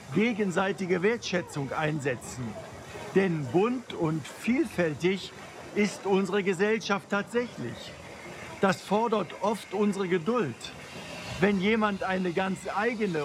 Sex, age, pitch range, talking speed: male, 50-69, 160-205 Hz, 95 wpm